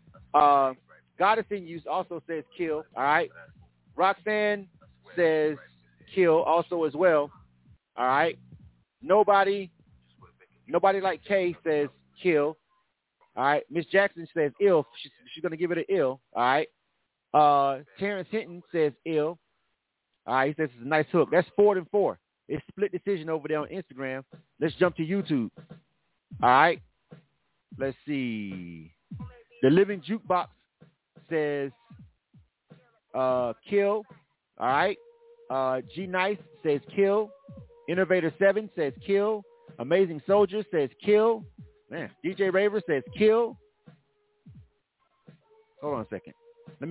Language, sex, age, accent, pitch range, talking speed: English, male, 30-49, American, 150-205 Hz, 130 wpm